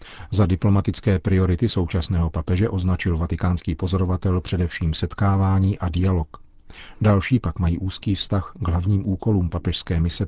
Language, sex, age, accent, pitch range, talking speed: Czech, male, 40-59, native, 85-100 Hz, 130 wpm